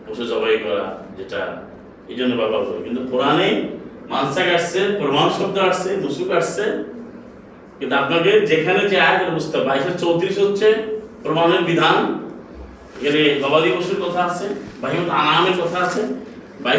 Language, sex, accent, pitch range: Bengali, male, native, 155-210 Hz